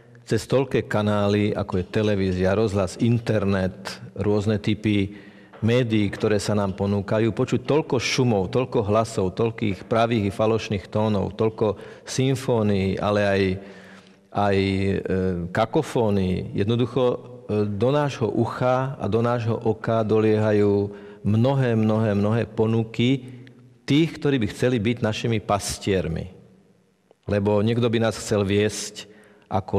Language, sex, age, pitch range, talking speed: Slovak, male, 40-59, 100-115 Hz, 115 wpm